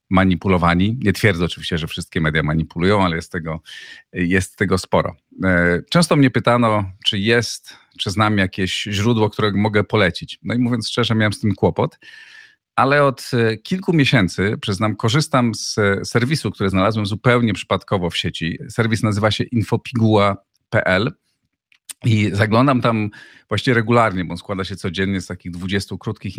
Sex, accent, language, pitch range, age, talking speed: male, native, Polish, 95-125 Hz, 40-59, 150 wpm